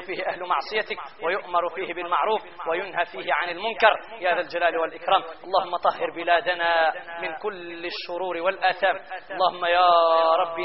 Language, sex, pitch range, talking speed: Arabic, male, 175-235 Hz, 135 wpm